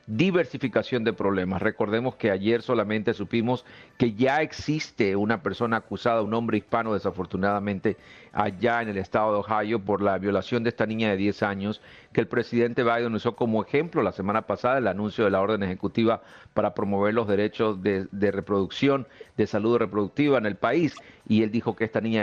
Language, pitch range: Spanish, 100-120 Hz